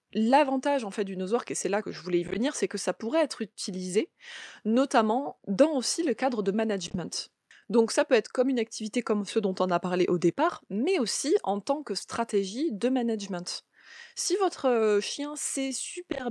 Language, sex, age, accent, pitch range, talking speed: French, female, 20-39, French, 195-250 Hz, 200 wpm